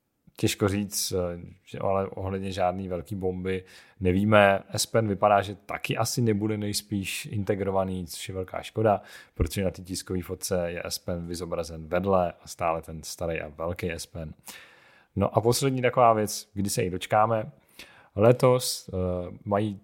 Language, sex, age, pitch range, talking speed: Czech, male, 30-49, 90-105 Hz, 140 wpm